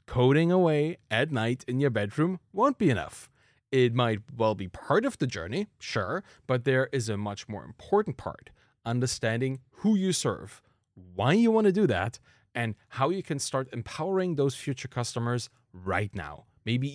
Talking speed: 175 wpm